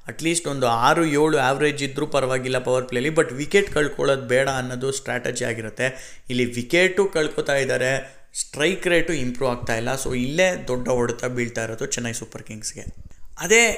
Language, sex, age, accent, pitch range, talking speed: Kannada, male, 20-39, native, 125-160 Hz, 155 wpm